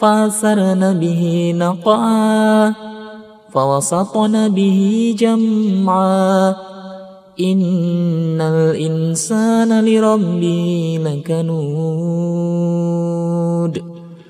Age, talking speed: 30-49, 40 wpm